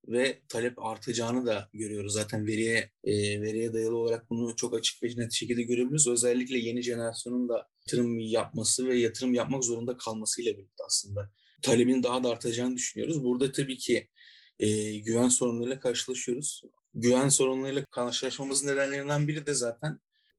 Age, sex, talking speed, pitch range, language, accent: 30-49, male, 145 wpm, 115-130 Hz, Turkish, native